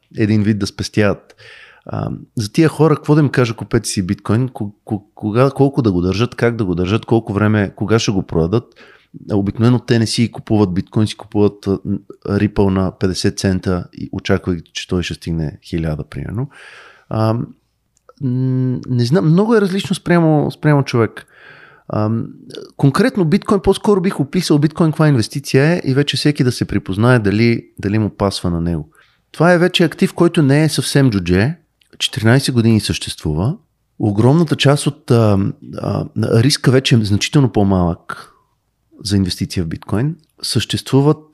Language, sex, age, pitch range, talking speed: Bulgarian, male, 30-49, 105-145 Hz, 150 wpm